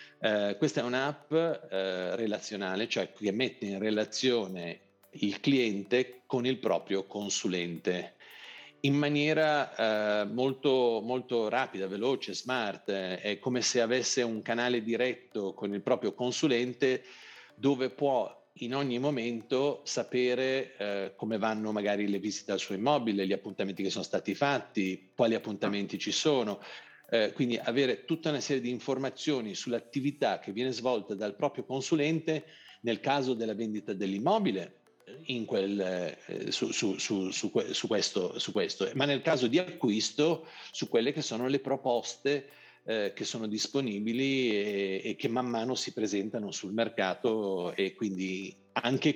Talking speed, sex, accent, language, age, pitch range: 130 wpm, male, native, Italian, 50-69, 100-135 Hz